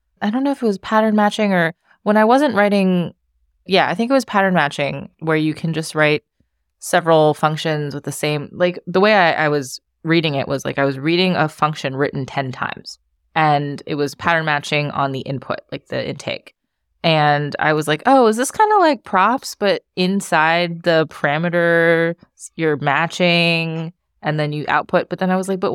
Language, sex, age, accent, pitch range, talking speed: English, female, 20-39, American, 140-180 Hz, 200 wpm